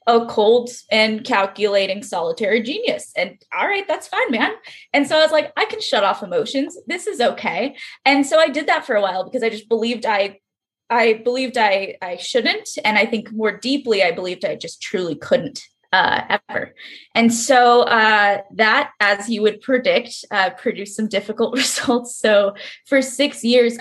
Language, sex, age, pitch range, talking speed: English, female, 20-39, 205-260 Hz, 185 wpm